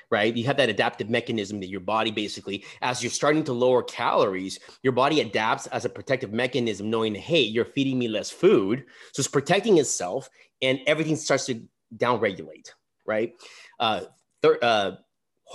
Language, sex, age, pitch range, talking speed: English, male, 30-49, 115-150 Hz, 165 wpm